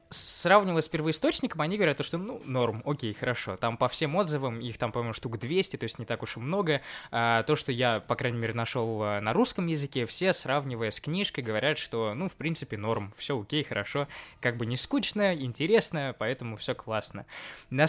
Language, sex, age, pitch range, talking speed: Russian, male, 20-39, 115-155 Hz, 195 wpm